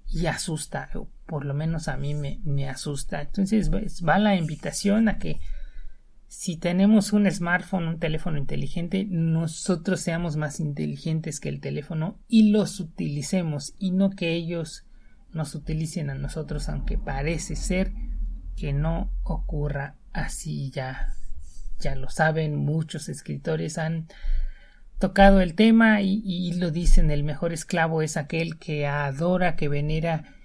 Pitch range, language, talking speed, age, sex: 150-185 Hz, Spanish, 145 wpm, 40-59, male